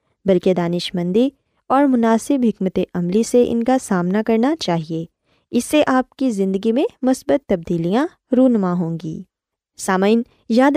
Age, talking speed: 20-39, 140 wpm